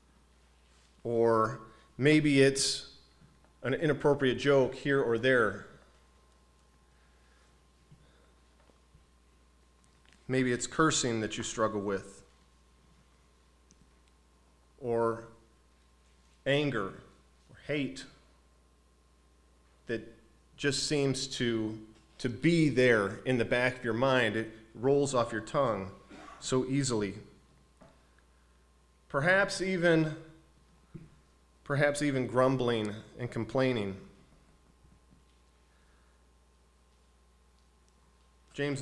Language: English